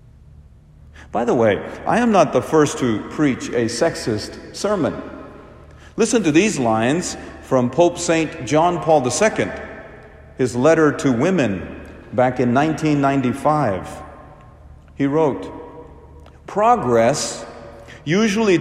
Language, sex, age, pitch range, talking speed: English, male, 50-69, 100-165 Hz, 110 wpm